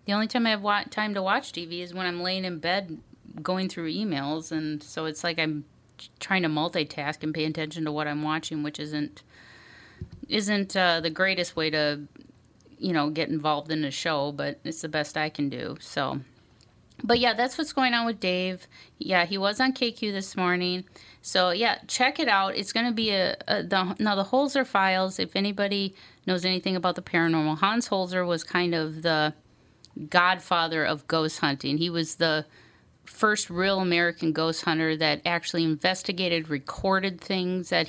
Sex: female